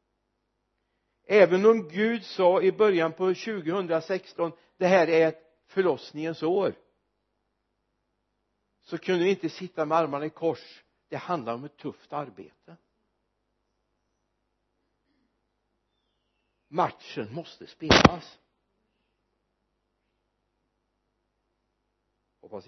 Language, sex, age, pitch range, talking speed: Swedish, male, 60-79, 120-165 Hz, 85 wpm